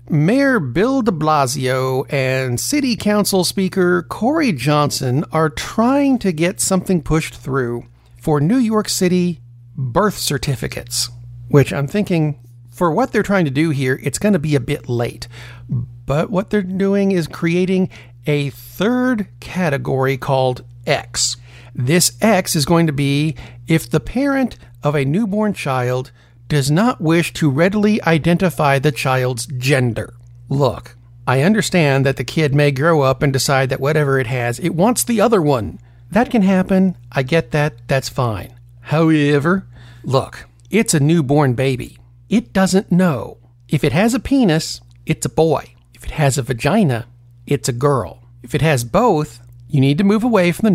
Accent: American